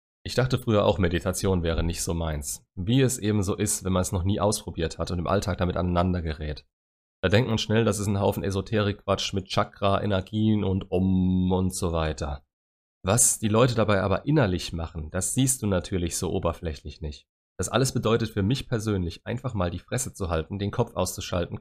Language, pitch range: German, 85-110 Hz